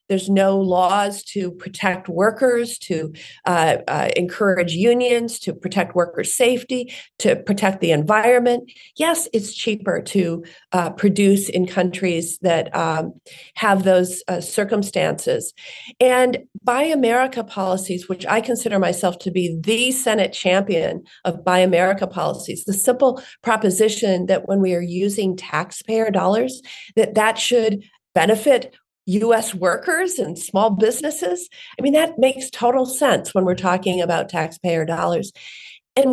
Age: 50-69